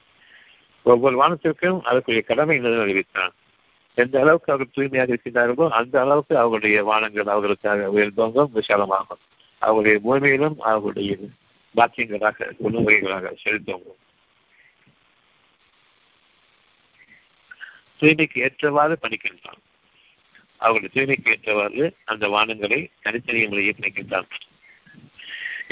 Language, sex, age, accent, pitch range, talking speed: Tamil, male, 50-69, native, 110-140 Hz, 80 wpm